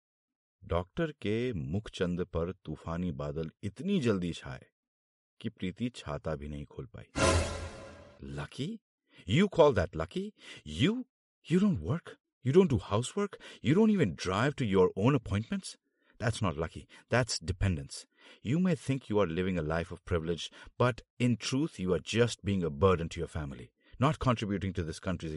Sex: male